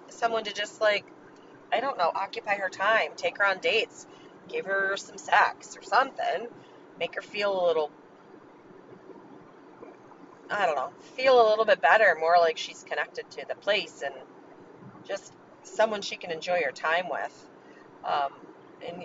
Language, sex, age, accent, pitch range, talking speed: English, female, 30-49, American, 170-235 Hz, 160 wpm